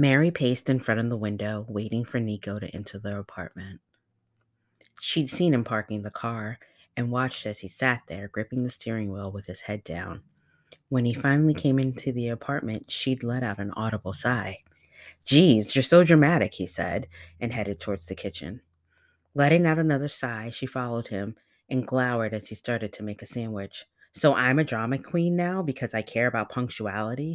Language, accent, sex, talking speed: English, American, female, 185 wpm